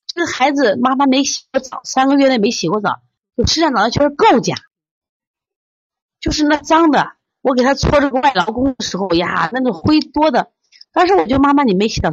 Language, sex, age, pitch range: Chinese, female, 30-49, 180-290 Hz